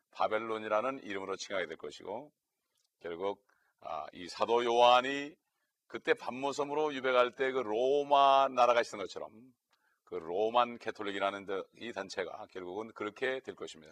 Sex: male